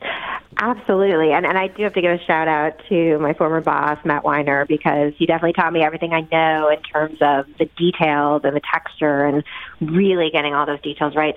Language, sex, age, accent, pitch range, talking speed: English, female, 40-59, American, 145-170 Hz, 205 wpm